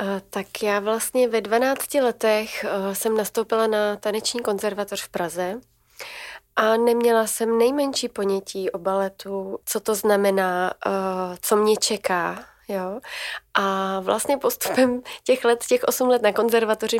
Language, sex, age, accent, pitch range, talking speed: Czech, female, 30-49, native, 195-230 Hz, 130 wpm